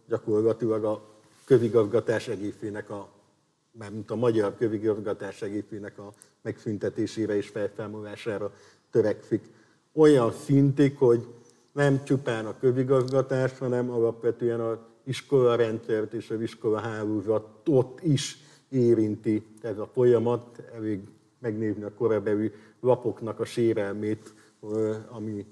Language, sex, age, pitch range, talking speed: Hungarian, male, 50-69, 105-120 Hz, 100 wpm